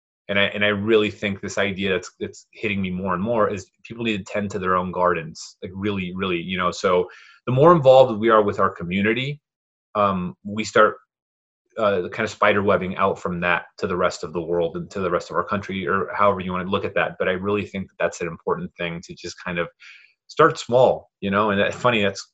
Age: 30-49